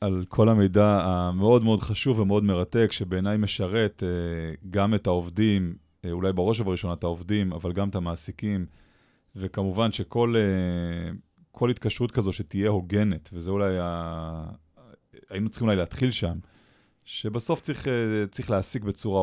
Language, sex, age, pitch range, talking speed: Hebrew, male, 30-49, 90-110 Hz, 130 wpm